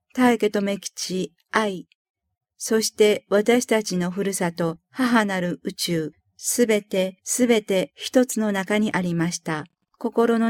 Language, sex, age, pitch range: Japanese, female, 50-69, 185-225 Hz